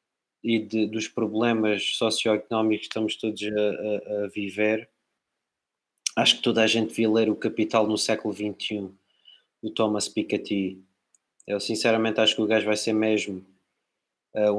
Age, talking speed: 20-39, 150 wpm